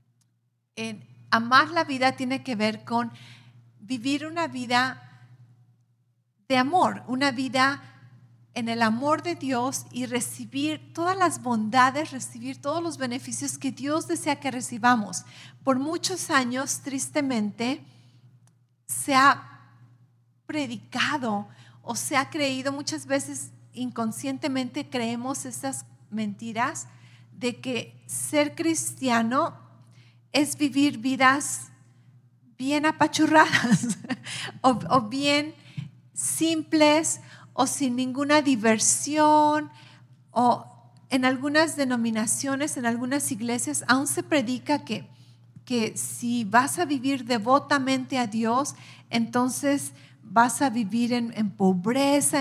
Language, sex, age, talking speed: English, female, 40-59, 105 wpm